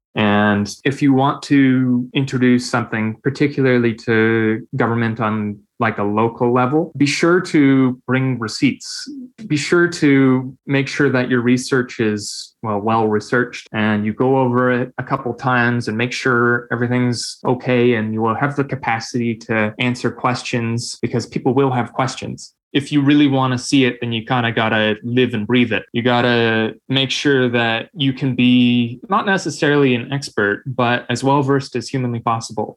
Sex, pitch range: male, 115-135 Hz